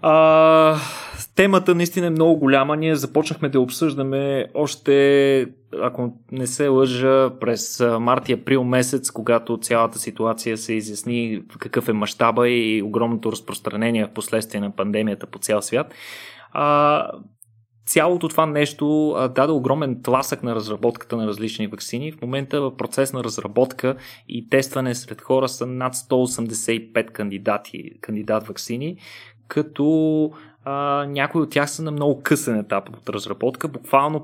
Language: Bulgarian